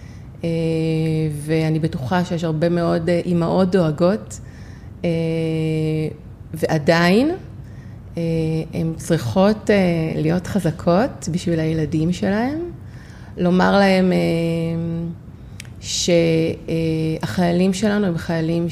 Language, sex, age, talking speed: Hebrew, female, 30-49, 65 wpm